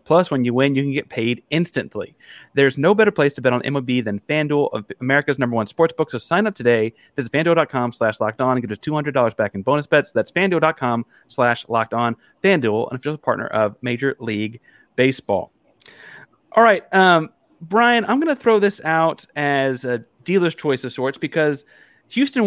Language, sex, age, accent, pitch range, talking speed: English, male, 30-49, American, 125-165 Hz, 190 wpm